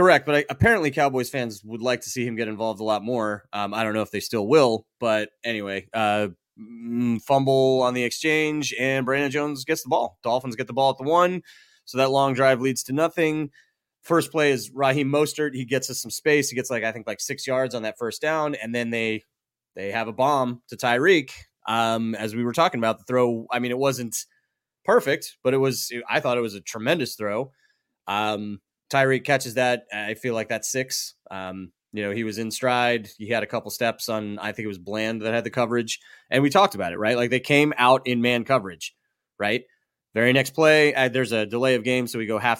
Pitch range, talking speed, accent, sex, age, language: 110-130 Hz, 230 wpm, American, male, 30-49, English